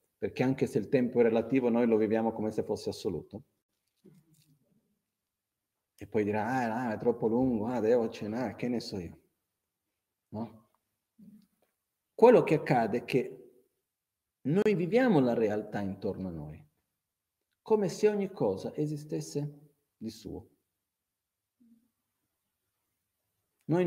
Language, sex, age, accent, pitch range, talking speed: Italian, male, 40-59, native, 95-120 Hz, 125 wpm